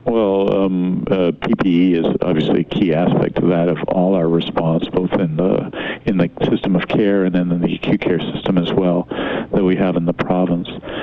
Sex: male